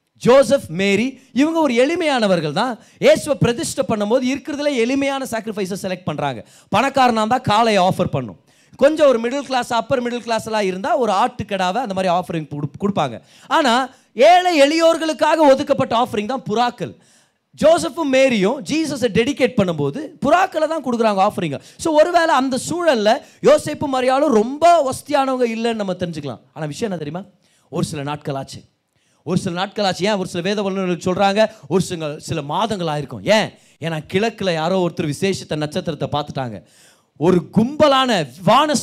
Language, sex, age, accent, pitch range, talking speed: Tamil, male, 30-49, native, 155-255 Hz, 150 wpm